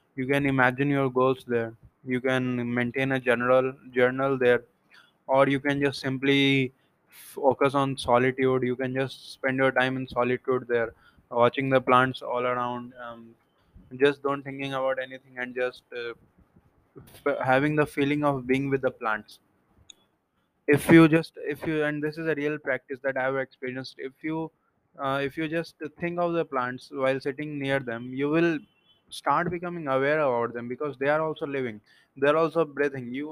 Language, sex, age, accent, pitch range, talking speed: English, male, 20-39, Indian, 125-150 Hz, 175 wpm